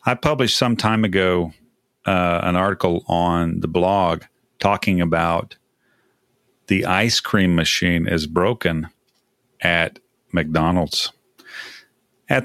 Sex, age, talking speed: male, 40-59, 105 wpm